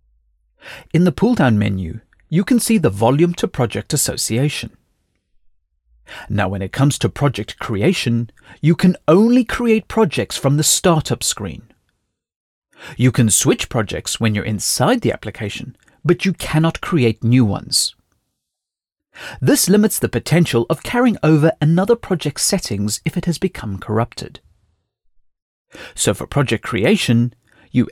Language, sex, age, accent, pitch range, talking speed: English, male, 40-59, British, 105-175 Hz, 140 wpm